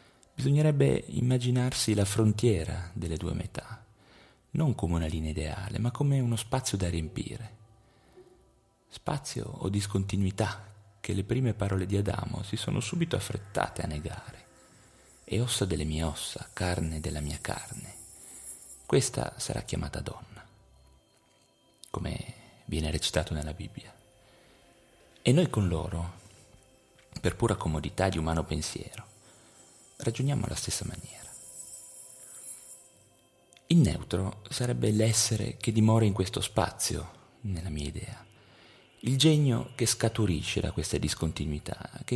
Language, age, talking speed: Italian, 40-59, 120 wpm